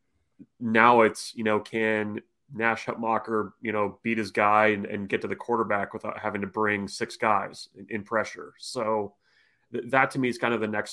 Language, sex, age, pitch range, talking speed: English, male, 30-49, 105-115 Hz, 205 wpm